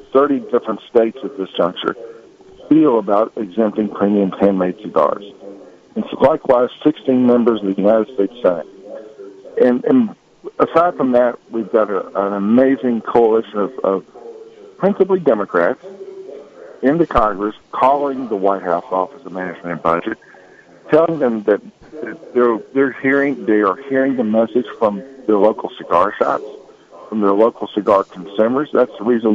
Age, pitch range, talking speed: 50-69, 100-145 Hz, 150 wpm